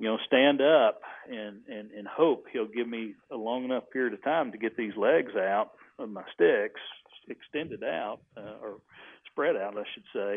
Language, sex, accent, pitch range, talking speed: English, male, American, 105-130 Hz, 195 wpm